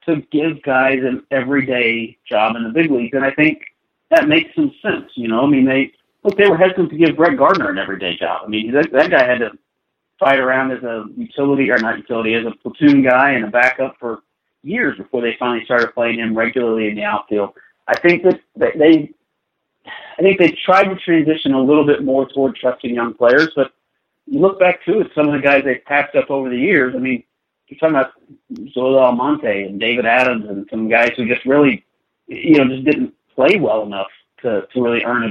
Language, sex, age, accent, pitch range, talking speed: English, male, 40-59, American, 115-145 Hz, 220 wpm